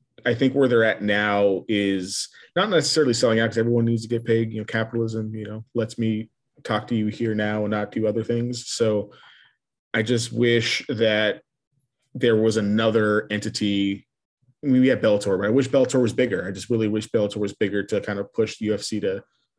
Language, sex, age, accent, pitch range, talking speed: English, male, 30-49, American, 105-120 Hz, 205 wpm